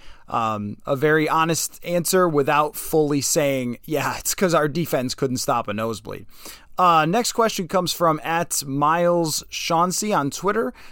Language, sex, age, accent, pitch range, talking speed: English, male, 20-39, American, 135-175 Hz, 150 wpm